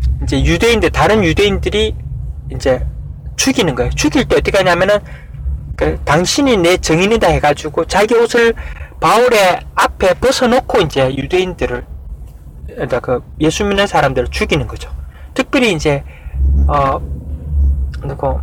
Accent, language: native, Korean